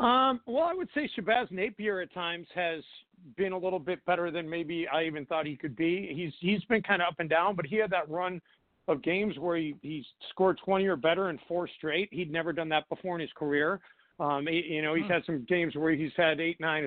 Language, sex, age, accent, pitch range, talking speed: English, male, 50-69, American, 160-190 Hz, 240 wpm